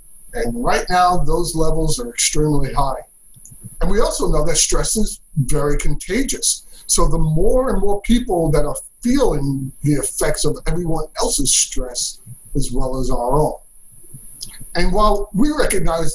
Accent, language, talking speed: American, English, 150 wpm